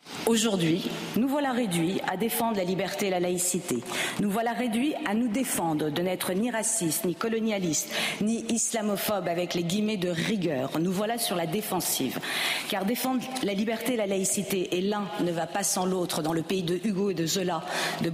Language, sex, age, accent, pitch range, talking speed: French, female, 40-59, French, 170-210 Hz, 190 wpm